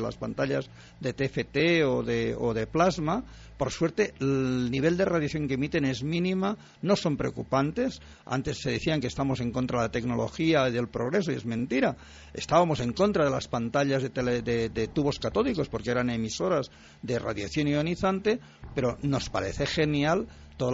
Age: 50-69